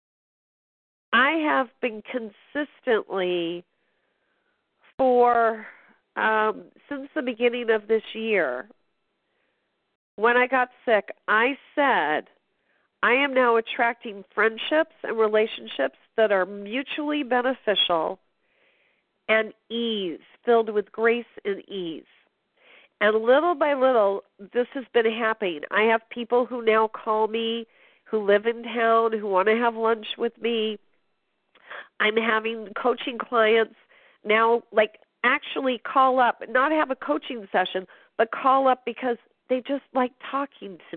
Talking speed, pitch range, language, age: 125 wpm, 220-270 Hz, English, 40-59